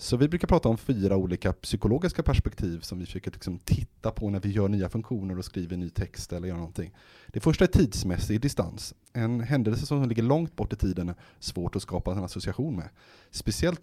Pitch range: 95-120 Hz